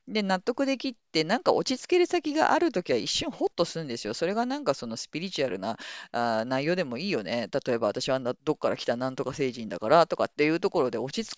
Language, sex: Japanese, female